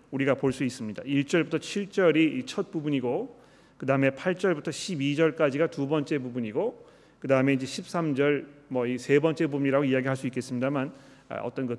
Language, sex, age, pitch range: Korean, male, 40-59, 135-175 Hz